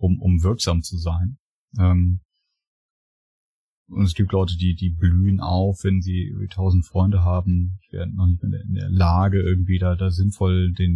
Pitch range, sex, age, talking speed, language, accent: 95-105 Hz, male, 30-49, 175 wpm, German, German